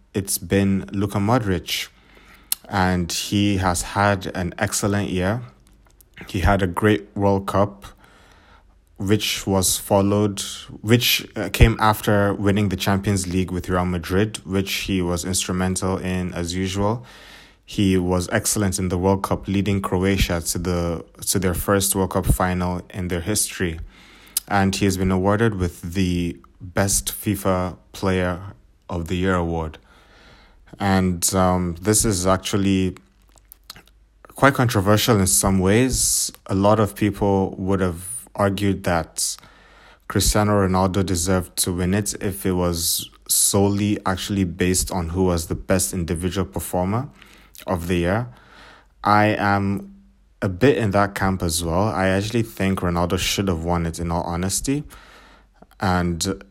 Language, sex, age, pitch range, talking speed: English, male, 20-39, 90-100 Hz, 140 wpm